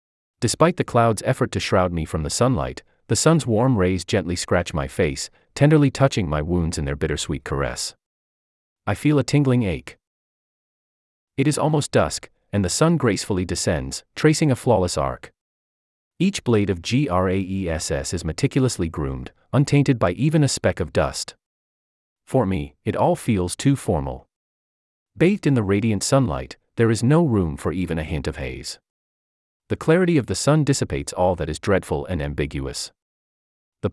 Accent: American